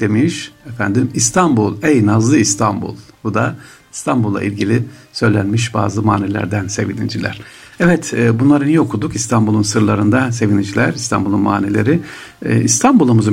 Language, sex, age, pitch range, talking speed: Turkish, male, 60-79, 100-120 Hz, 115 wpm